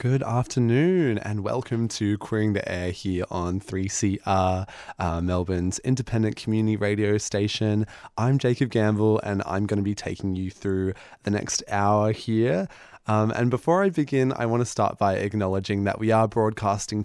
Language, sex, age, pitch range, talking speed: English, male, 20-39, 95-110 Hz, 165 wpm